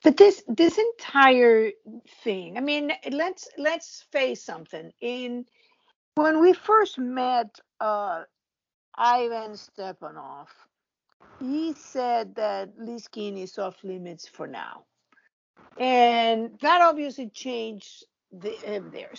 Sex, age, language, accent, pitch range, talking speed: female, 50-69, English, American, 195-270 Hz, 115 wpm